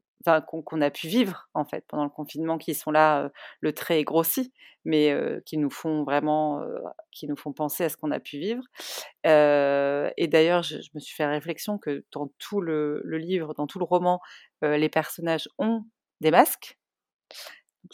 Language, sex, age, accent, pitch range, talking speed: French, female, 30-49, French, 150-185 Hz, 195 wpm